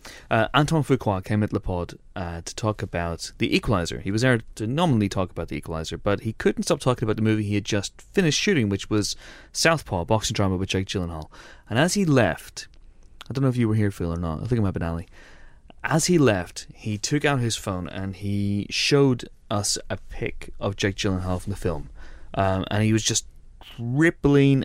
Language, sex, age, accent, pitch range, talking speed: English, male, 30-49, British, 95-130 Hz, 215 wpm